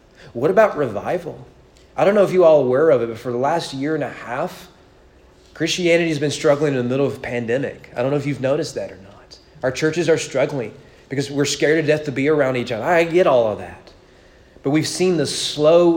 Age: 30-49